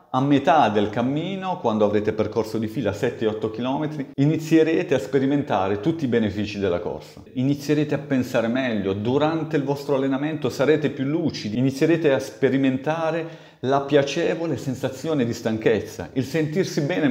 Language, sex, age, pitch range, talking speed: Italian, male, 40-59, 115-150 Hz, 145 wpm